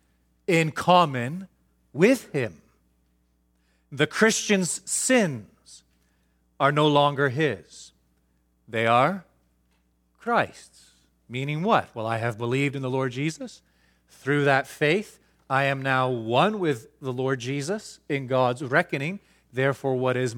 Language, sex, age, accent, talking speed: English, male, 40-59, American, 120 wpm